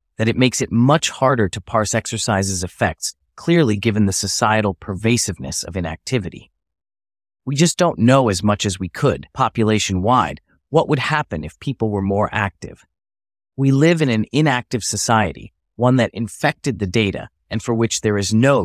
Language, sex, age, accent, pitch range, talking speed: English, male, 30-49, American, 95-130 Hz, 165 wpm